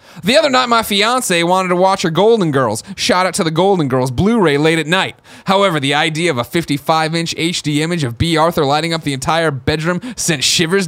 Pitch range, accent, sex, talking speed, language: 165-230 Hz, American, male, 215 wpm, English